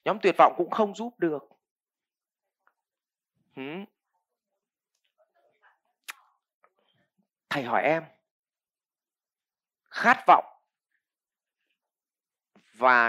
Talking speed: 60 wpm